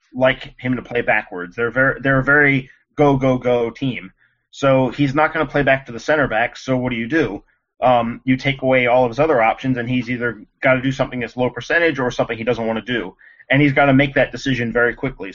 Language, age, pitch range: English, 30-49, 115-135 Hz